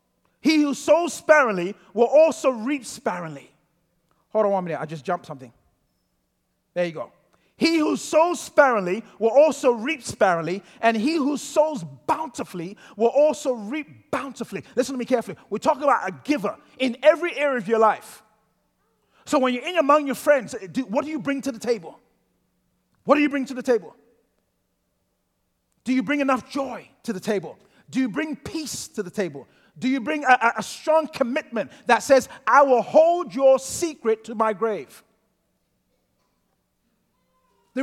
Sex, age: male, 30-49